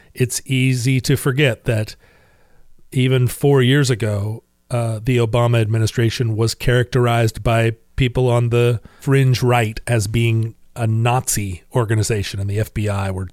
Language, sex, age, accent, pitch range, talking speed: English, male, 40-59, American, 110-135 Hz, 135 wpm